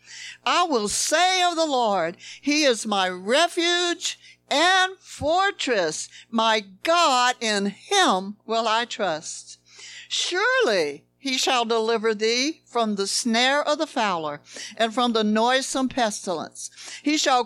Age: 60-79